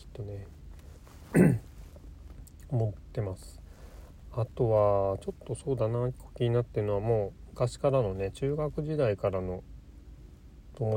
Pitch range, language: 80-120 Hz, Japanese